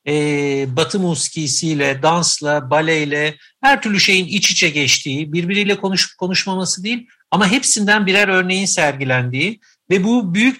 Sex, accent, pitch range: male, native, 150-200 Hz